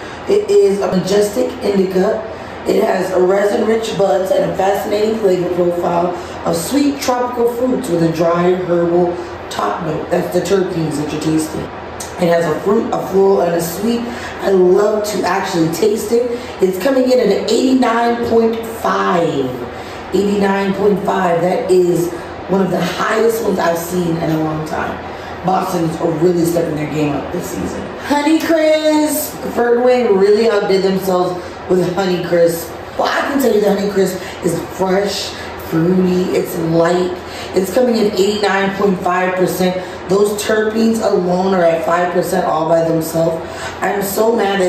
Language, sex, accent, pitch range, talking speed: English, female, American, 175-220 Hz, 150 wpm